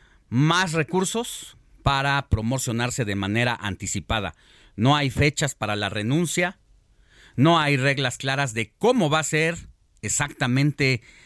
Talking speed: 125 wpm